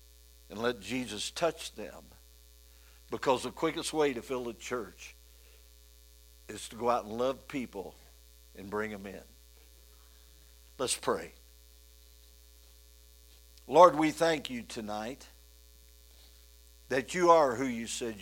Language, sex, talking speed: English, male, 120 wpm